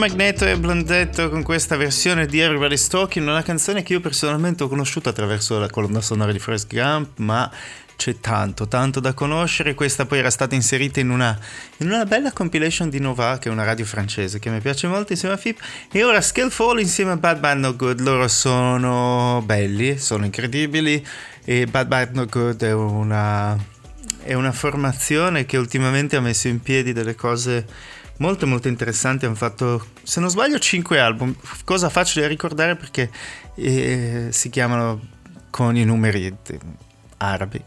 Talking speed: 175 wpm